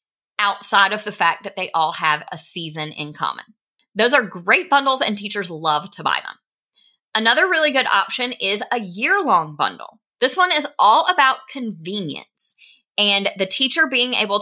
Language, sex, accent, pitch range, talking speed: English, female, American, 190-260 Hz, 170 wpm